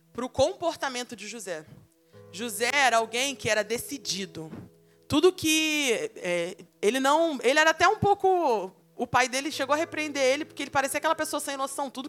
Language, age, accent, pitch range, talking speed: Portuguese, 20-39, Brazilian, 215-310 Hz, 180 wpm